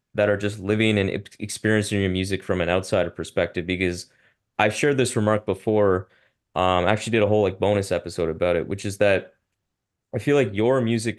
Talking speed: 200 wpm